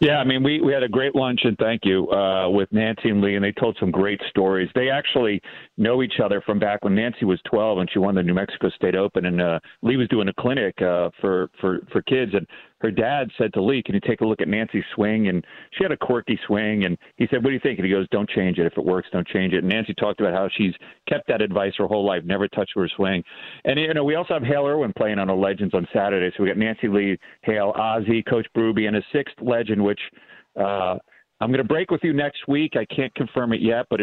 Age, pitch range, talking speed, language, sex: 40-59, 95-125 Hz, 270 wpm, English, male